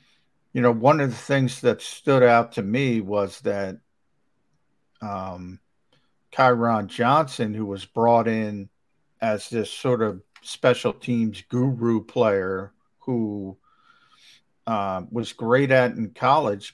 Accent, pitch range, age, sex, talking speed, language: American, 105-130 Hz, 50-69, male, 125 wpm, English